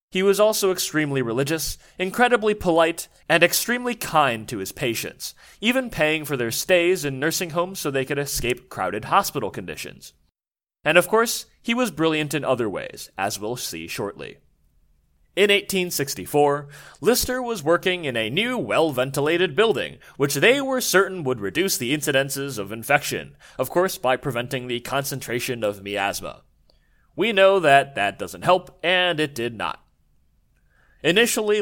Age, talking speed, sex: 30-49, 150 wpm, male